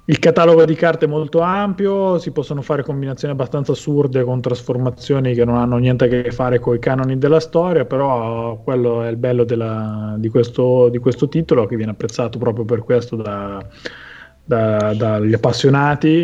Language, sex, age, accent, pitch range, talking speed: Italian, male, 30-49, native, 115-150 Hz, 165 wpm